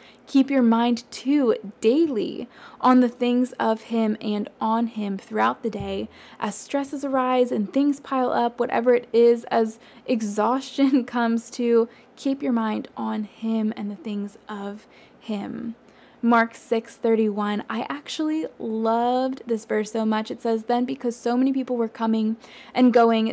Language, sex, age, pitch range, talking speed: English, female, 20-39, 215-250 Hz, 155 wpm